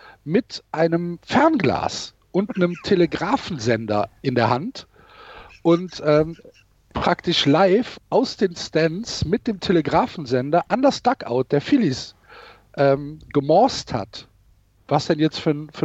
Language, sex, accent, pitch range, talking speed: German, male, German, 140-195 Hz, 120 wpm